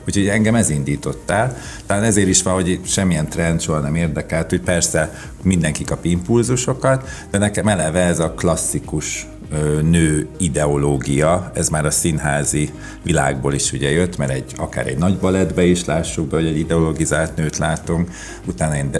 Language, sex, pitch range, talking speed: Hungarian, male, 75-95 Hz, 165 wpm